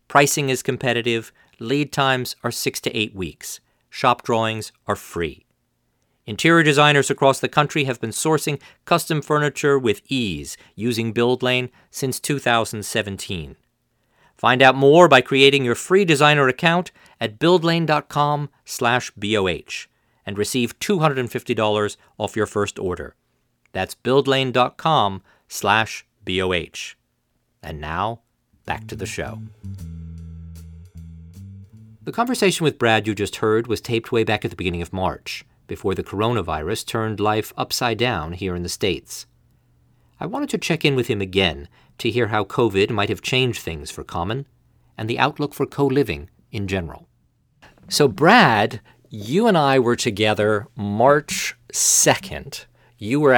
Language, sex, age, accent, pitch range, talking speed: English, male, 50-69, American, 100-135 Hz, 135 wpm